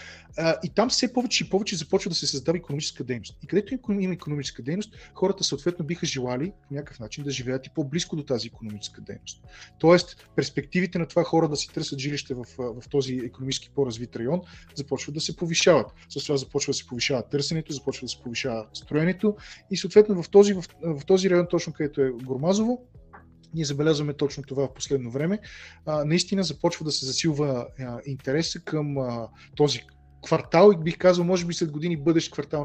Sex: male